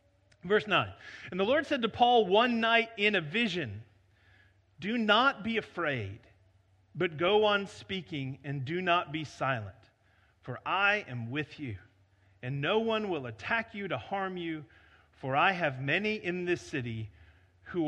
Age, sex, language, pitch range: 40-59, male, English, 115-175 Hz